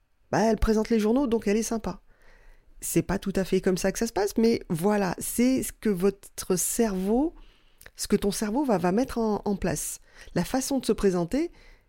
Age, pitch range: 30-49, 175-230 Hz